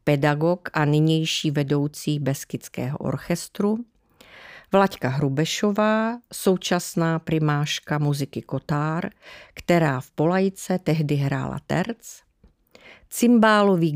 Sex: female